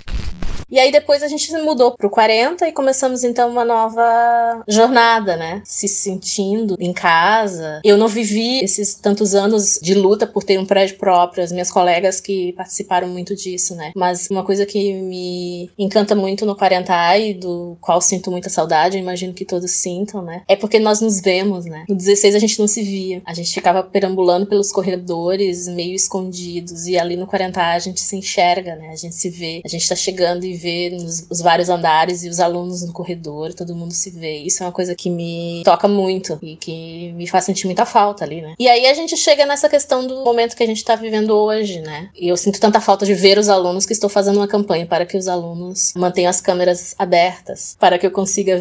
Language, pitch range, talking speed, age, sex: Portuguese, 175-210 Hz, 210 wpm, 20-39, female